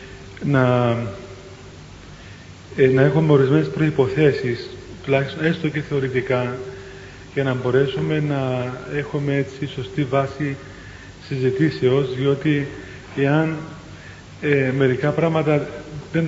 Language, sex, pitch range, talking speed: Greek, male, 125-150 Hz, 90 wpm